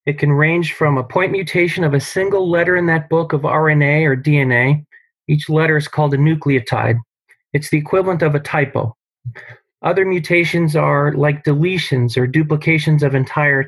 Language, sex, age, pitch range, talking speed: English, male, 30-49, 135-165 Hz, 170 wpm